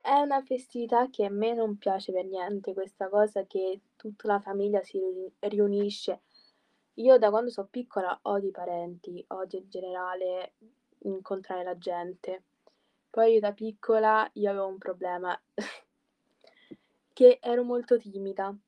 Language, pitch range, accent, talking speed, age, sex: Italian, 185-230 Hz, native, 140 wpm, 20-39, female